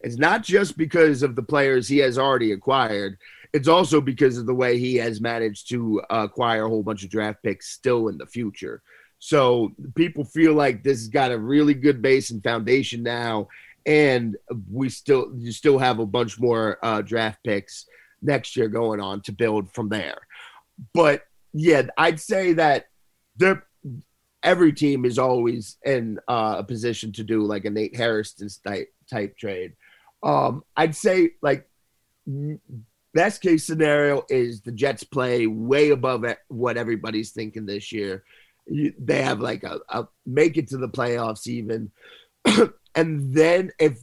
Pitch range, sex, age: 115-155 Hz, male, 30-49